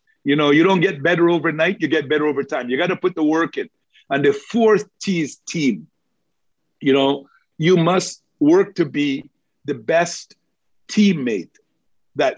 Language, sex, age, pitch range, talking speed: English, male, 50-69, 145-200 Hz, 175 wpm